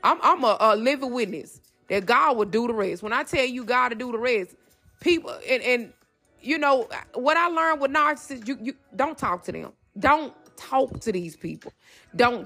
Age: 20-39